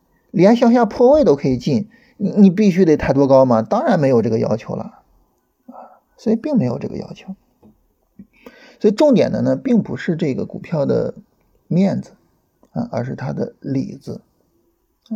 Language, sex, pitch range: Chinese, male, 140-220 Hz